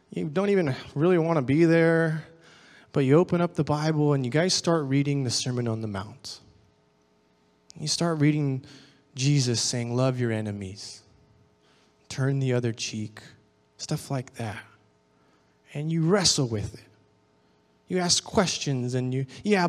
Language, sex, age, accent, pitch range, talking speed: English, male, 20-39, American, 110-160 Hz, 150 wpm